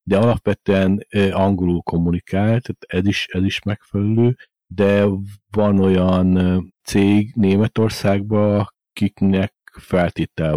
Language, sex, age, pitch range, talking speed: Hungarian, male, 50-69, 85-100 Hz, 95 wpm